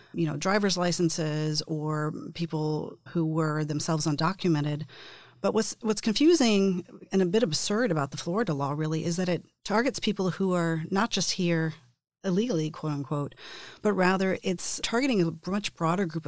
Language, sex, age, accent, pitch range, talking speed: English, female, 40-59, American, 155-190 Hz, 160 wpm